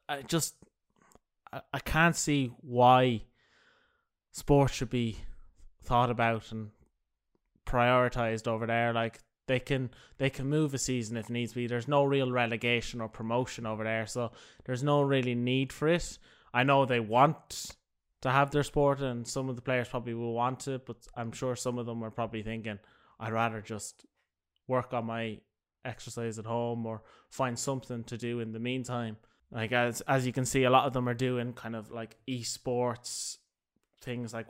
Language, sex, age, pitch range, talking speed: English, male, 20-39, 115-130 Hz, 175 wpm